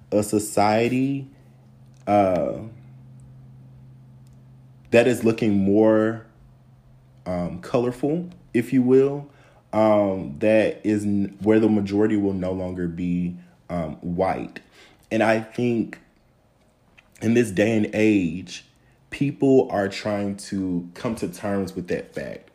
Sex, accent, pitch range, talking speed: male, American, 90-110 Hz, 110 wpm